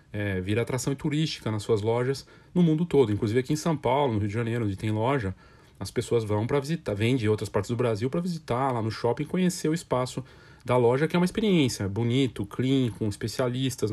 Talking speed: 230 wpm